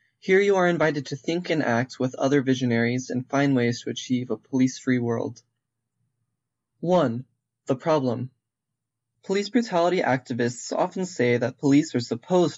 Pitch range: 125-155 Hz